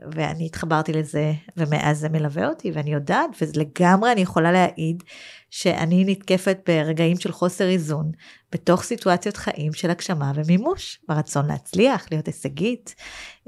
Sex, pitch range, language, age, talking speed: female, 160-195 Hz, Hebrew, 30-49, 130 wpm